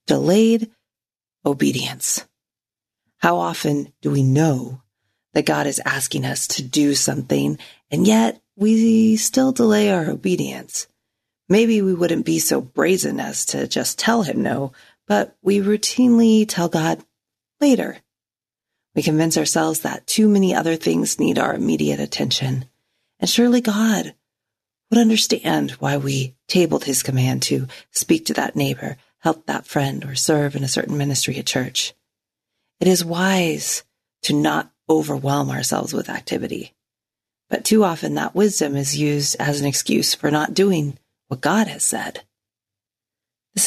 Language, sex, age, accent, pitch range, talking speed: English, female, 40-59, American, 115-195 Hz, 145 wpm